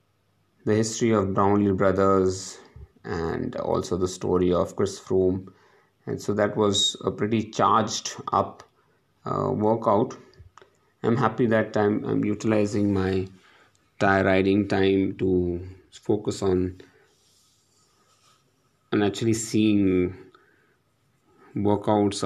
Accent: Indian